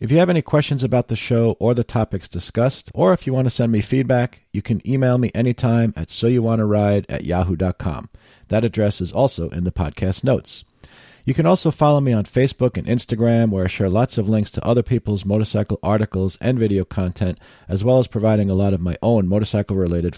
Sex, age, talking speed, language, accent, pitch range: male, 40-59, 210 wpm, English, American, 95-125 Hz